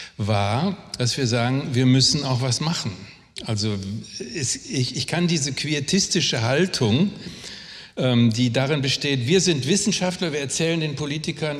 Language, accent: German, German